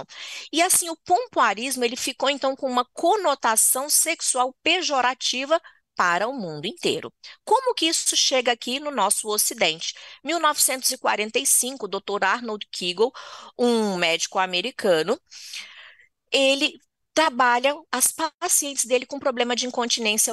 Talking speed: 120 wpm